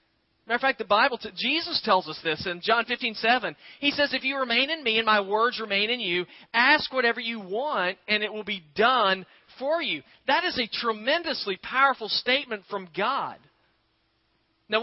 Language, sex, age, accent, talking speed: English, male, 40-59, American, 185 wpm